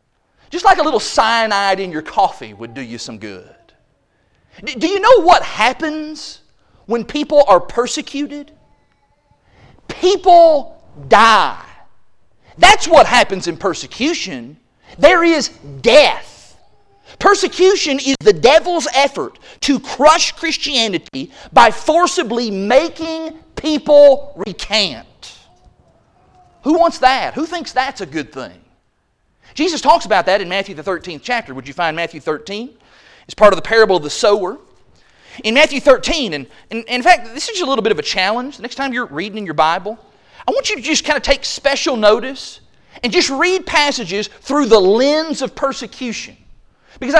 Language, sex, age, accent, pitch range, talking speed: English, male, 40-59, American, 210-315 Hz, 150 wpm